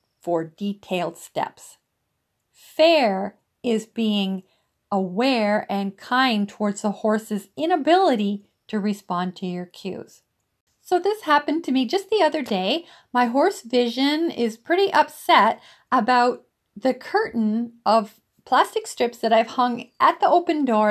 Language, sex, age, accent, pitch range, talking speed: English, female, 50-69, American, 210-295 Hz, 130 wpm